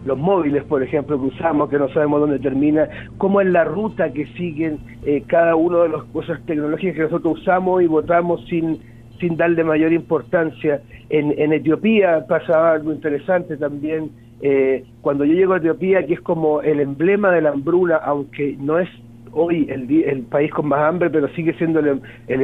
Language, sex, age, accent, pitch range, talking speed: Spanish, male, 50-69, Argentinian, 140-170 Hz, 185 wpm